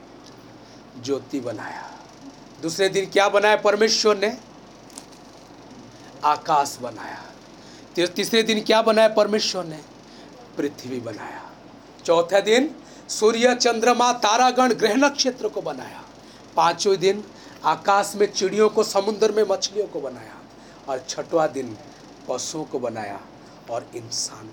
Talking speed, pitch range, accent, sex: 115 wpm, 205-290 Hz, native, male